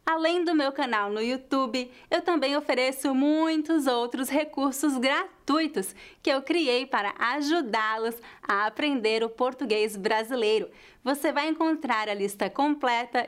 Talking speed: 130 wpm